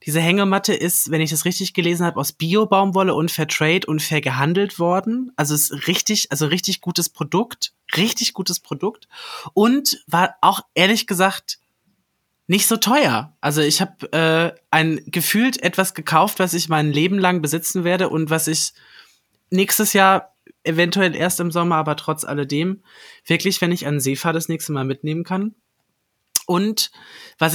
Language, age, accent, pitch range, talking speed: German, 20-39, German, 150-185 Hz, 165 wpm